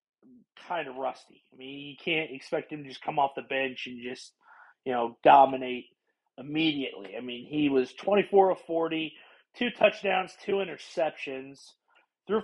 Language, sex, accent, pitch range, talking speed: English, male, American, 135-180 Hz, 160 wpm